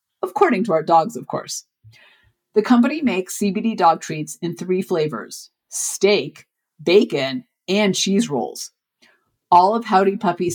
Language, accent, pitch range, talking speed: English, American, 165-215 Hz, 135 wpm